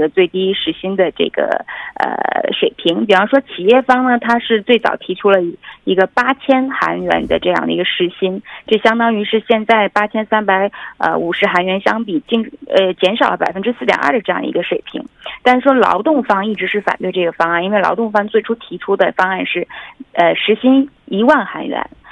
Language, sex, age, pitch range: Korean, female, 20-39, 190-255 Hz